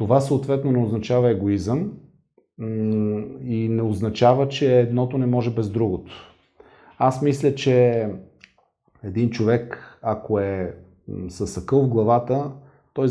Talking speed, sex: 115 wpm, male